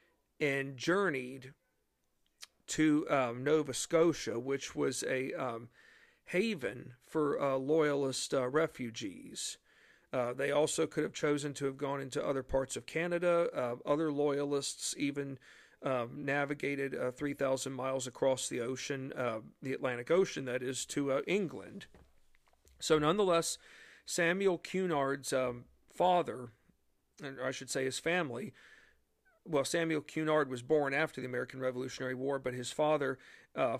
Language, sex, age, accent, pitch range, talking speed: English, male, 40-59, American, 130-155 Hz, 135 wpm